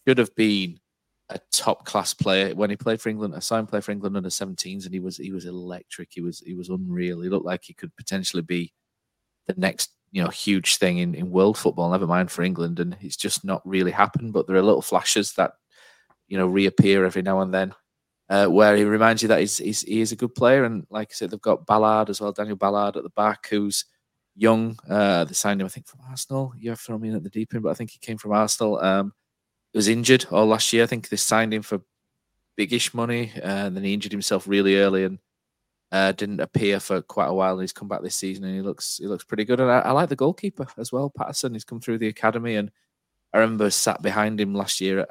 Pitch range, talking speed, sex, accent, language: 95-115 Hz, 250 wpm, male, British, English